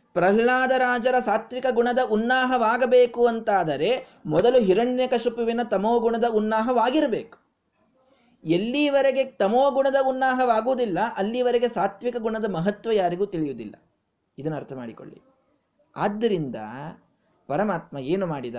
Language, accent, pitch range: Kannada, native, 175-255 Hz